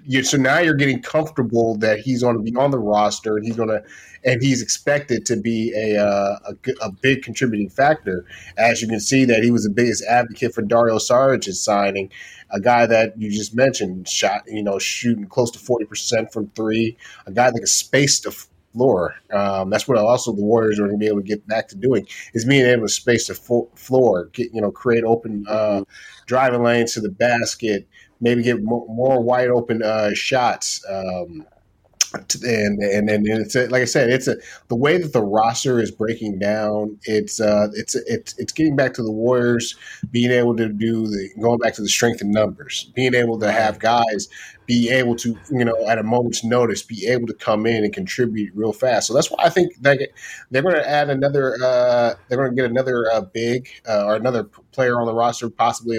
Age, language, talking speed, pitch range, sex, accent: 30-49, English, 215 wpm, 105-125 Hz, male, American